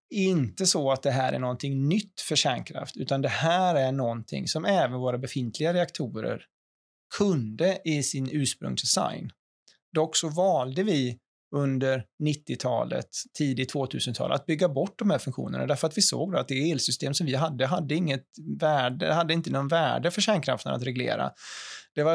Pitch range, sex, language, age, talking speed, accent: 130-165 Hz, male, Swedish, 20-39, 170 wpm, native